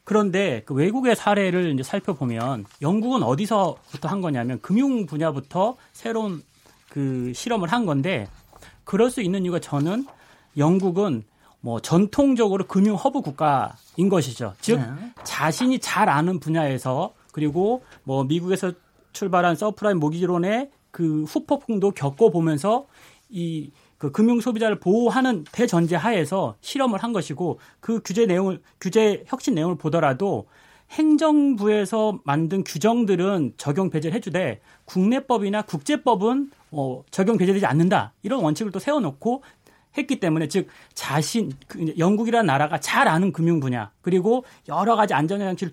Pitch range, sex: 160-230 Hz, male